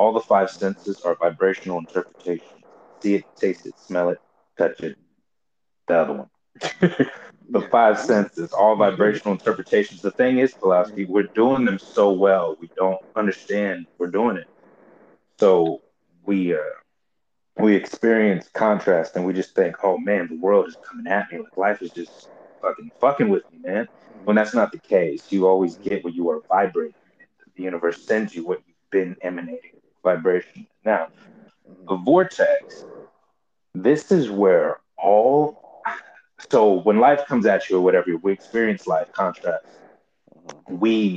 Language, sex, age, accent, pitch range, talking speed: English, male, 30-49, American, 95-145 Hz, 155 wpm